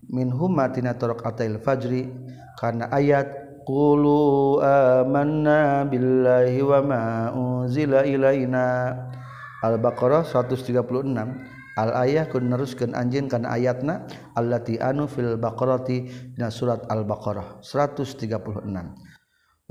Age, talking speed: 40-59, 95 wpm